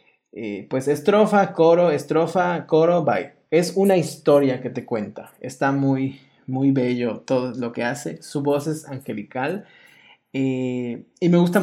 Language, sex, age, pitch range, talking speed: Spanish, male, 30-49, 135-170 Hz, 150 wpm